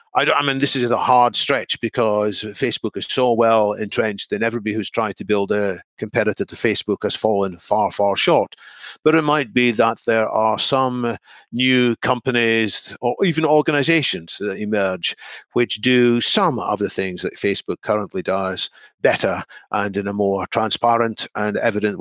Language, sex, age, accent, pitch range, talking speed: English, male, 50-69, British, 105-125 Hz, 170 wpm